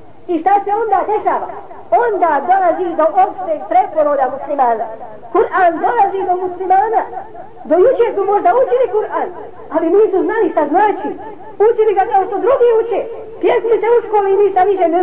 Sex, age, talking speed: female, 50-69, 160 wpm